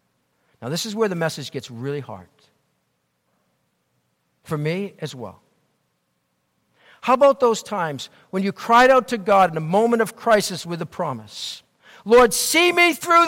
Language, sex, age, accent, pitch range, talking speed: English, male, 50-69, American, 190-315 Hz, 160 wpm